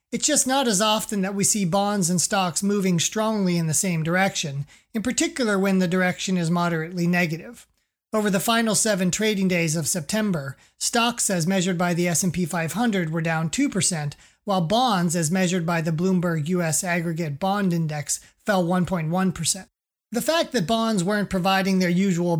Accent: American